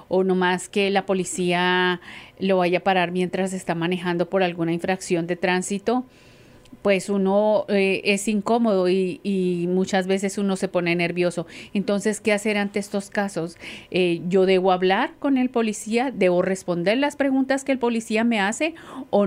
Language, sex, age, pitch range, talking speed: English, female, 40-59, 180-210 Hz, 170 wpm